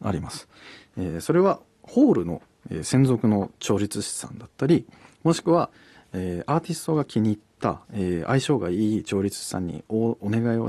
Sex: male